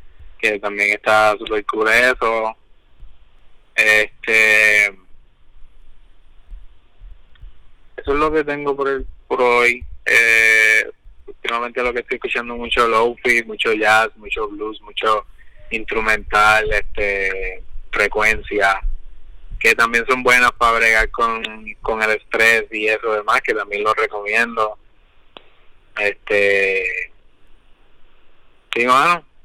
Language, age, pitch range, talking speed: Spanish, 20-39, 105-130 Hz, 100 wpm